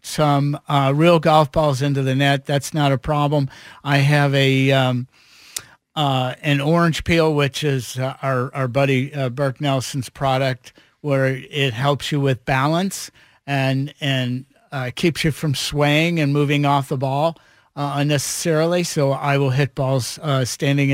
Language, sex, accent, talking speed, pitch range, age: English, male, American, 165 wpm, 135-155 Hz, 50-69